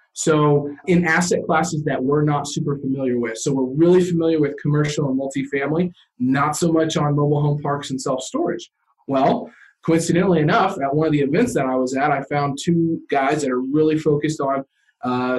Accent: American